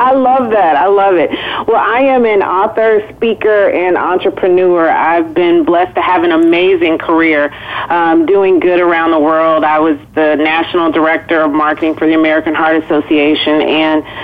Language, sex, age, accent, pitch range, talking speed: English, female, 40-59, American, 155-255 Hz, 175 wpm